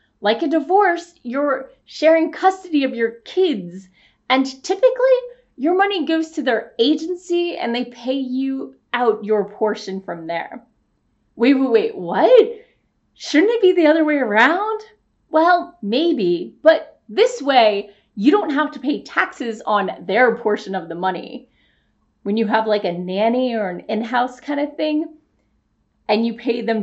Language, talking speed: English, 155 wpm